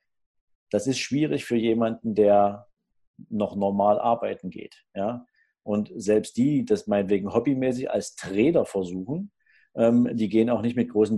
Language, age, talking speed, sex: German, 50-69, 145 wpm, male